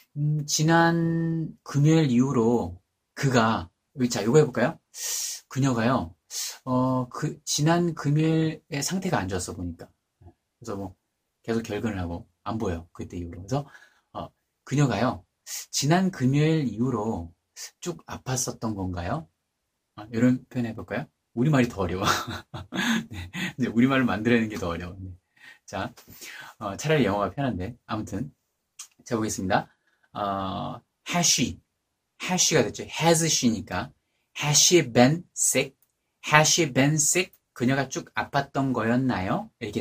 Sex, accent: male, native